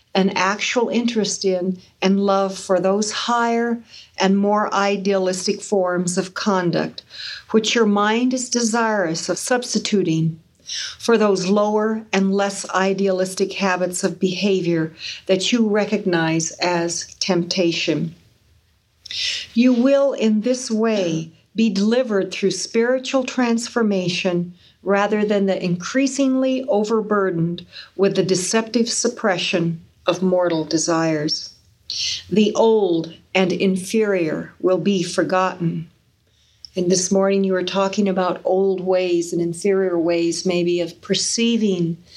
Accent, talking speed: American, 115 wpm